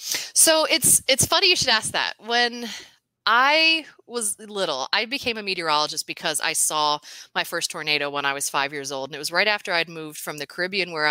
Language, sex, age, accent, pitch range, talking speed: English, female, 30-49, American, 155-215 Hz, 210 wpm